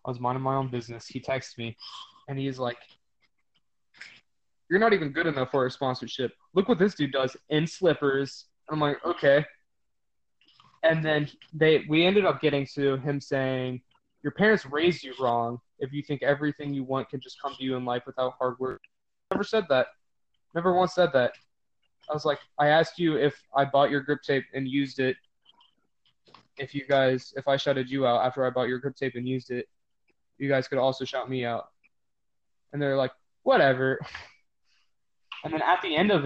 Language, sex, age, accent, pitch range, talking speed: English, male, 20-39, American, 130-155 Hz, 195 wpm